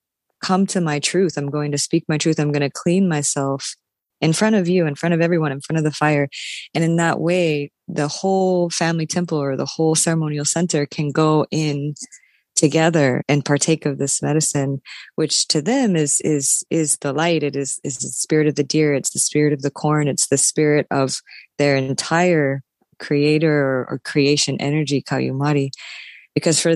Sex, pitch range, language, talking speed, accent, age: female, 145-165 Hz, English, 190 wpm, American, 20-39